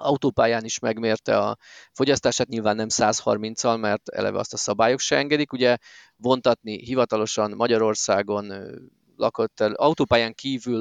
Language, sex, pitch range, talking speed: Hungarian, male, 115-145 Hz, 130 wpm